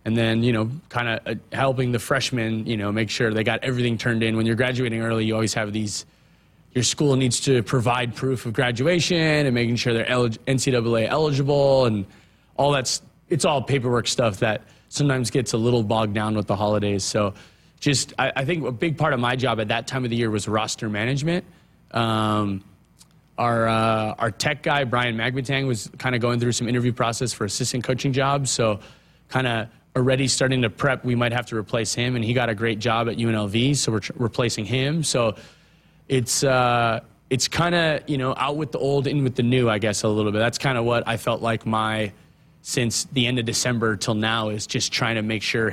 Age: 20-39